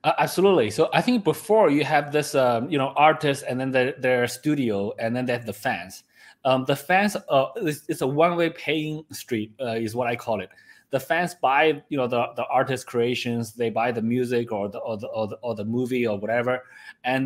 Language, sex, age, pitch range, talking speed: Italian, male, 20-39, 120-150 Hz, 230 wpm